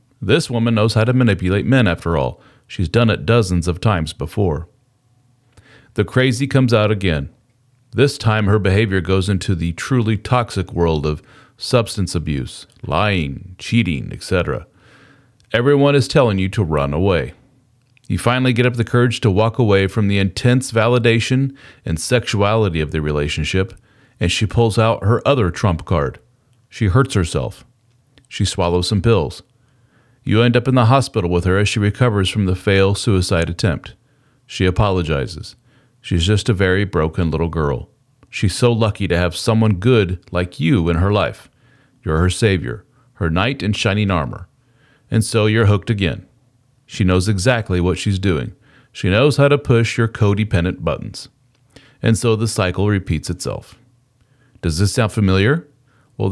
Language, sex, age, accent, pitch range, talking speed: English, male, 40-59, American, 95-125 Hz, 160 wpm